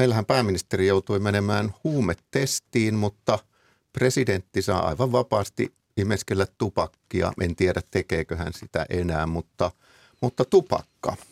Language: Finnish